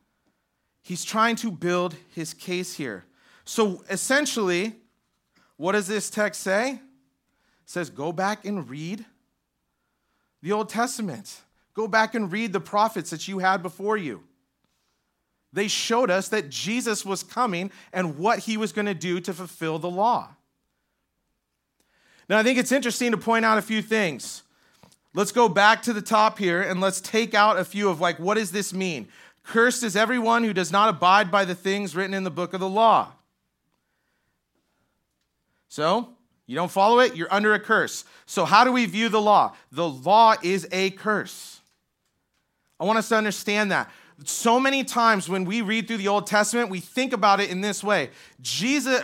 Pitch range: 185-220 Hz